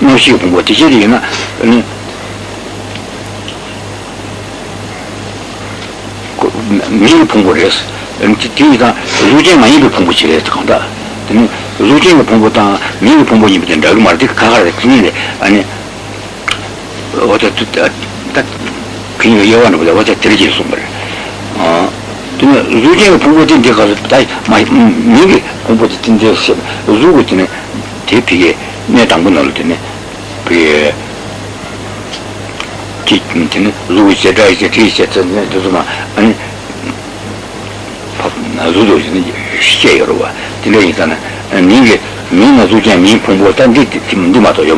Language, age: Italian, 60-79